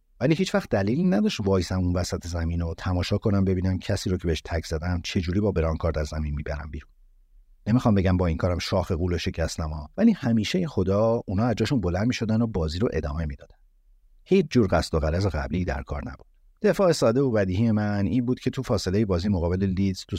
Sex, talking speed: male, 210 wpm